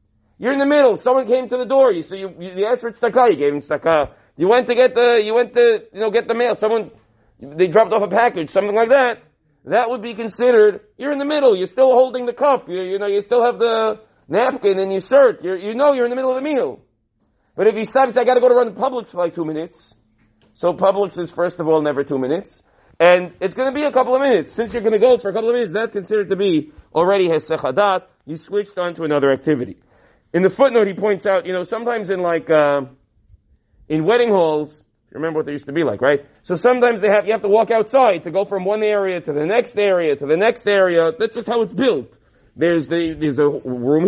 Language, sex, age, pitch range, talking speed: English, male, 40-59, 160-240 Hz, 255 wpm